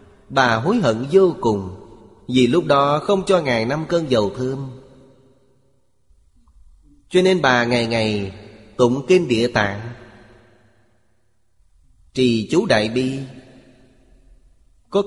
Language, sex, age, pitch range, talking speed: Vietnamese, male, 30-49, 115-145 Hz, 115 wpm